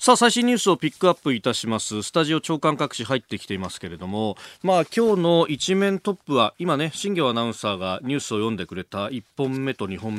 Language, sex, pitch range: Japanese, male, 110-165 Hz